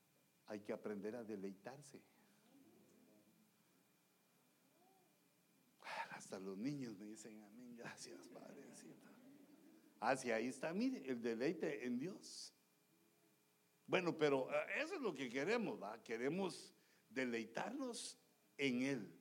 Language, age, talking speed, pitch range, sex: English, 60-79, 105 wpm, 130-205 Hz, male